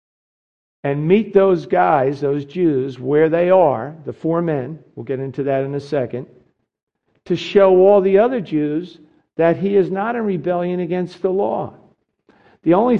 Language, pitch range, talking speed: English, 145-185 Hz, 165 wpm